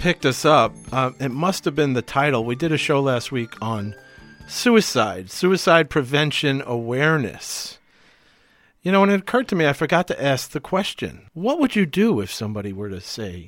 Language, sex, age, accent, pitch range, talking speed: English, male, 50-69, American, 110-155 Hz, 190 wpm